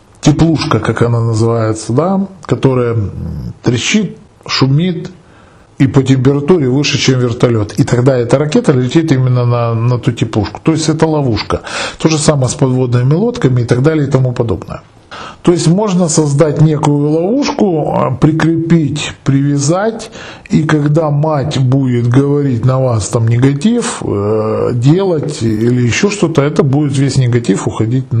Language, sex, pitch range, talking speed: Russian, male, 120-160 Hz, 140 wpm